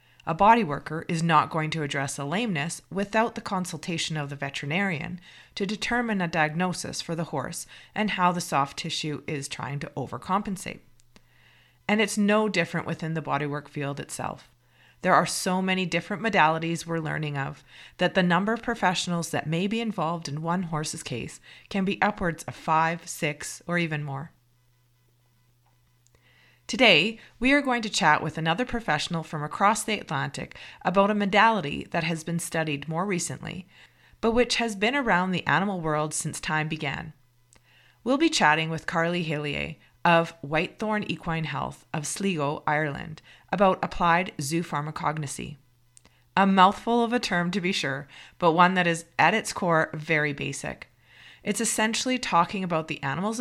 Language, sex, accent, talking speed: English, female, American, 160 wpm